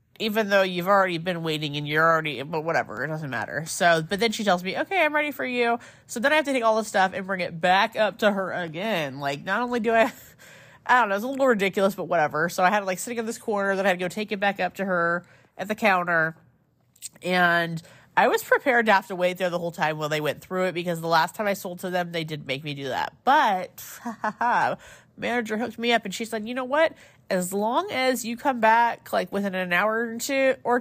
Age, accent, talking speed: 30-49, American, 260 wpm